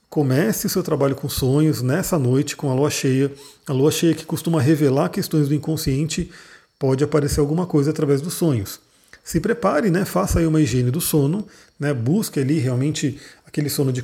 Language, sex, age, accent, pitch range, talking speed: Portuguese, male, 40-59, Brazilian, 140-175 Hz, 190 wpm